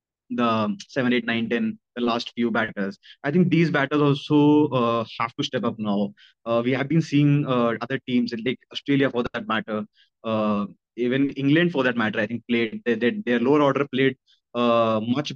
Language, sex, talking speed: English, male, 195 wpm